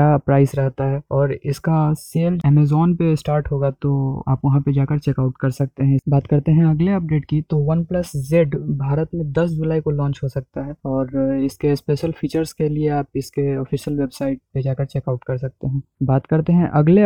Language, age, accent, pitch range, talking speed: Hindi, 20-39, native, 140-160 Hz, 210 wpm